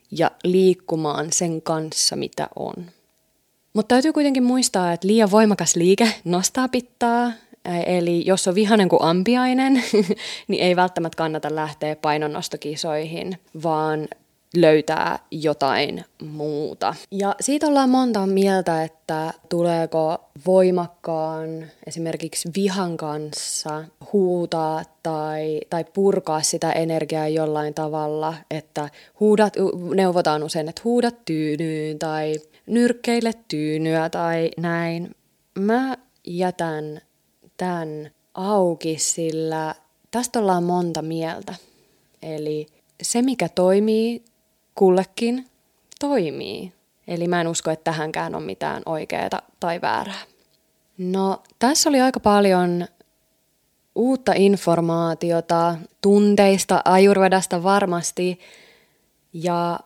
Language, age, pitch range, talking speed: Finnish, 20-39, 160-205 Hz, 100 wpm